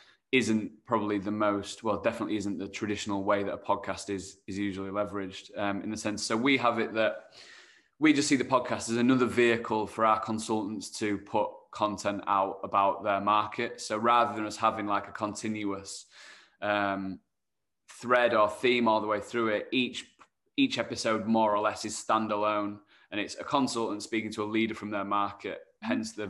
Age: 20-39